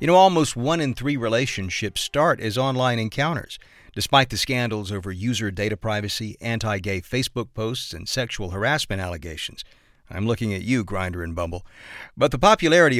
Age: 50-69